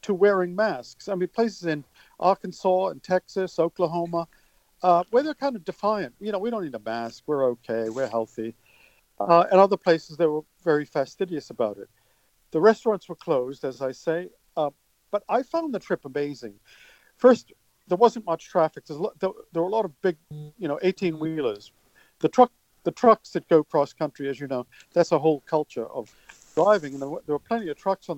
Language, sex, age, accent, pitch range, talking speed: English, male, 50-69, American, 150-205 Hz, 200 wpm